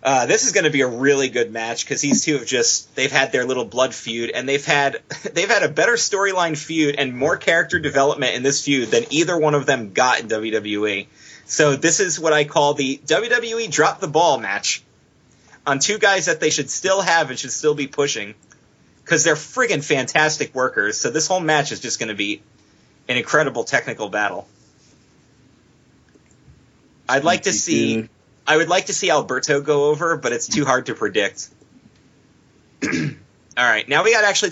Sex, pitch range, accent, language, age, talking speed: male, 125-160 Hz, American, English, 30-49, 195 wpm